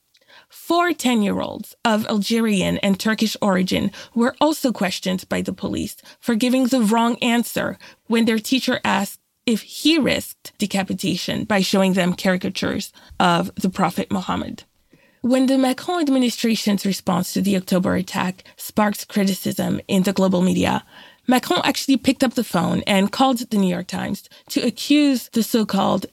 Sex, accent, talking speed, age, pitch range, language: female, American, 155 wpm, 20-39, 195-240 Hz, English